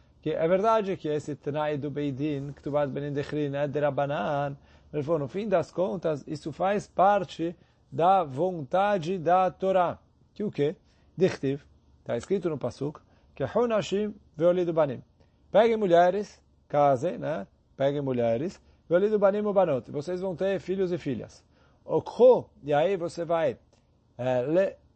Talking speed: 150 wpm